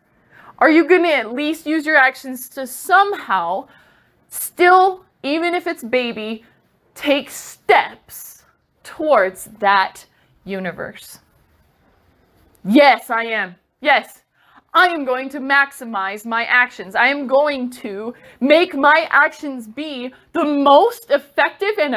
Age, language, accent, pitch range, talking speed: 20-39, English, American, 240-305 Hz, 120 wpm